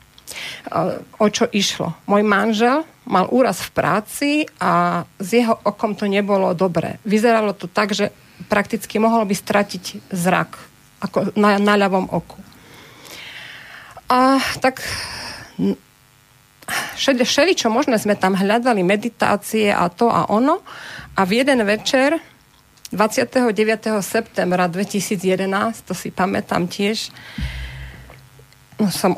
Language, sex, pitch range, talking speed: Slovak, female, 195-240 Hz, 110 wpm